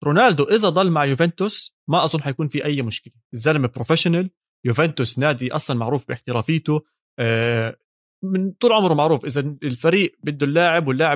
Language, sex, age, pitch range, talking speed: Arabic, male, 20-39, 125-155 Hz, 145 wpm